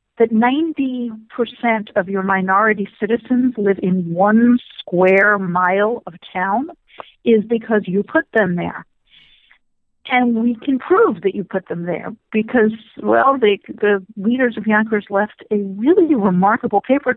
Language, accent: English, American